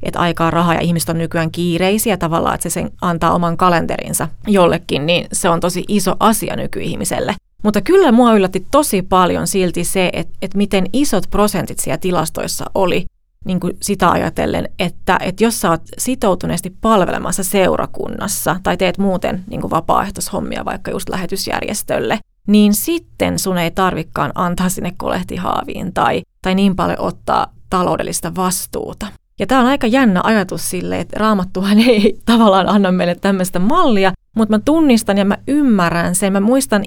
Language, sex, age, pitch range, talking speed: Finnish, female, 30-49, 180-215 Hz, 160 wpm